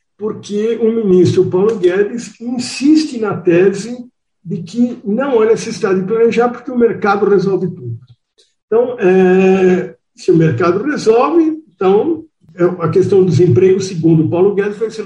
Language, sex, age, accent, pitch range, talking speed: Portuguese, male, 60-79, Brazilian, 150-230 Hz, 145 wpm